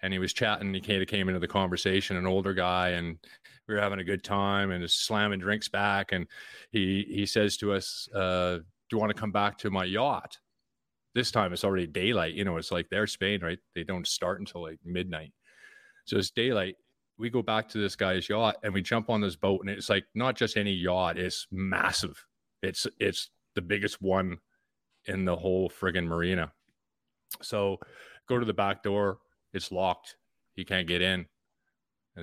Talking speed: 205 wpm